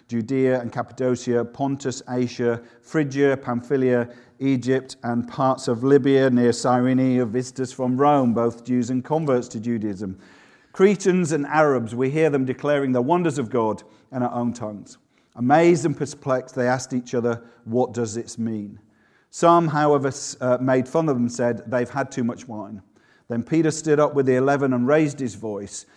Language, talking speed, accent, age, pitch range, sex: English, 165 wpm, British, 40-59, 120-145 Hz, male